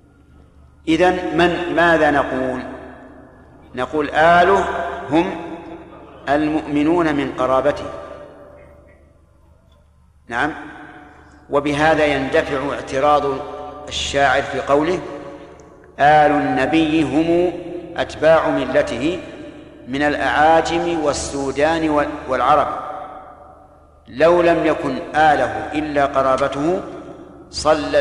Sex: male